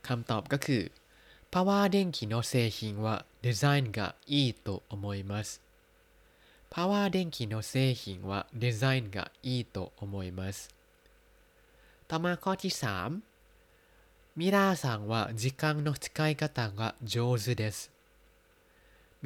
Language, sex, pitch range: Thai, male, 110-145 Hz